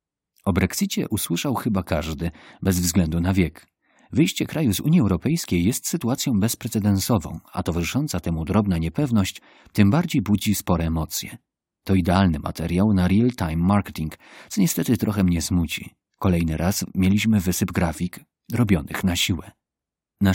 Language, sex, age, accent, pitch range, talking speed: Polish, male, 40-59, native, 85-110 Hz, 140 wpm